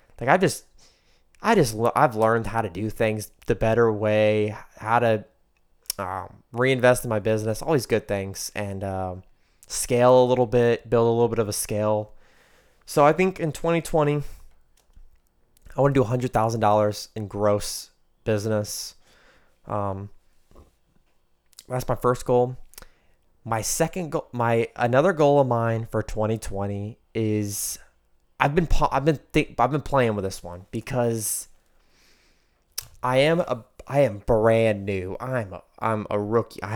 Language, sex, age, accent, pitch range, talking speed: English, male, 20-39, American, 100-120 Hz, 150 wpm